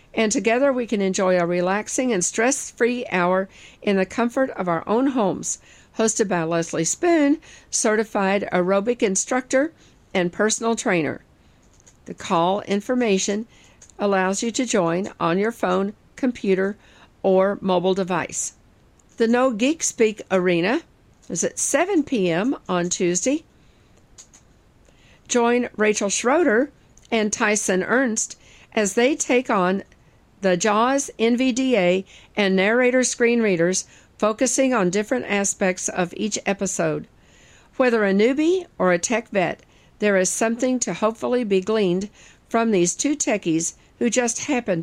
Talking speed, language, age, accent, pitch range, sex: 130 wpm, English, 50-69, American, 185-240 Hz, female